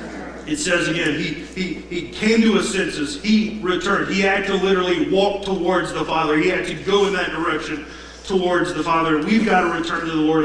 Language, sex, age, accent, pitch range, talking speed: English, male, 40-59, American, 175-210 Hz, 210 wpm